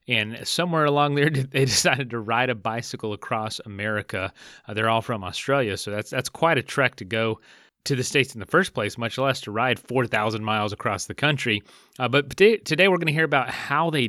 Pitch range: 105-140 Hz